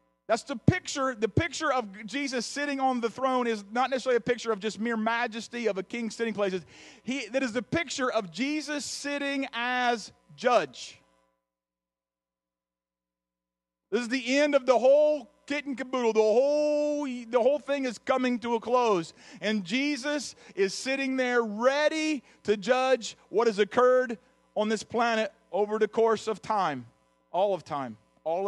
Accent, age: American, 40-59